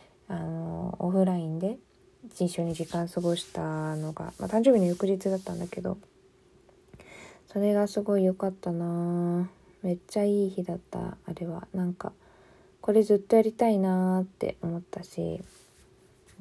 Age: 20-39